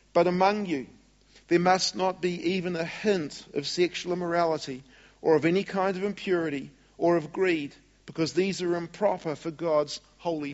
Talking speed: 165 wpm